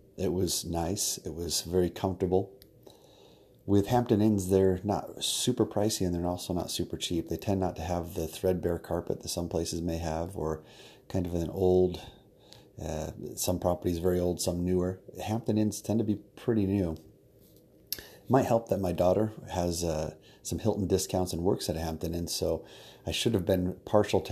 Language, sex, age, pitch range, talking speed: English, male, 30-49, 85-100 Hz, 185 wpm